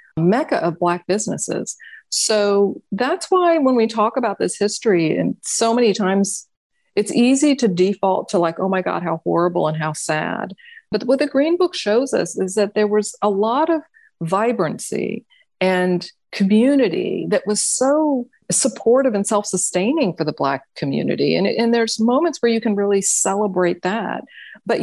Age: 40-59